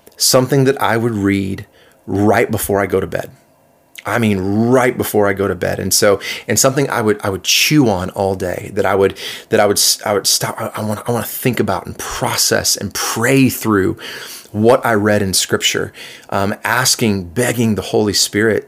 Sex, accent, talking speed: male, American, 200 wpm